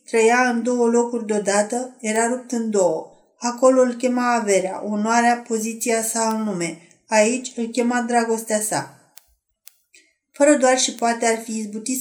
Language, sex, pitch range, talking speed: Romanian, female, 210-245 Hz, 150 wpm